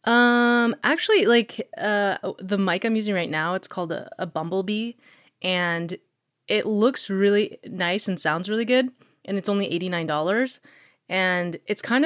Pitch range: 170-205 Hz